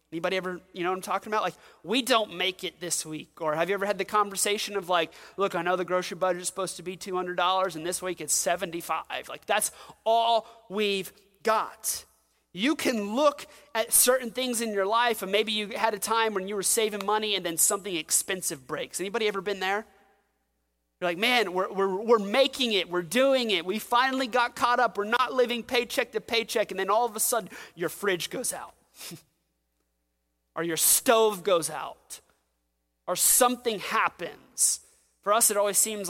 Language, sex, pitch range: English, male, 180-230 Hz